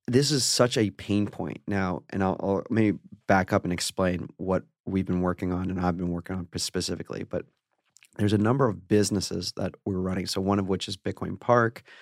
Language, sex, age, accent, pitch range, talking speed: English, male, 30-49, American, 95-110 Hz, 210 wpm